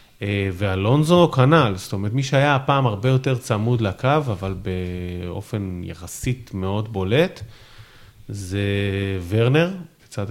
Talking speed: 115 wpm